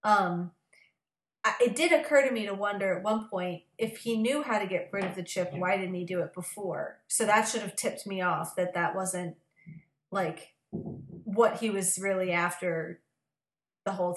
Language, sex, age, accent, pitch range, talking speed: English, female, 30-49, American, 175-210 Hz, 195 wpm